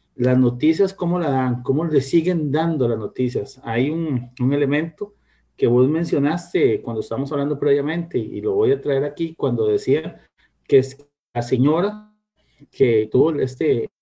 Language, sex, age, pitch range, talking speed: Spanish, male, 50-69, 130-165 Hz, 160 wpm